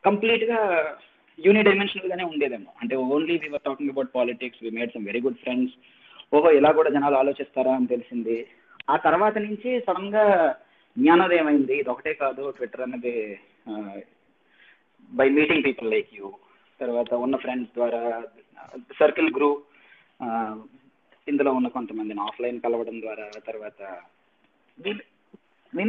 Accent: native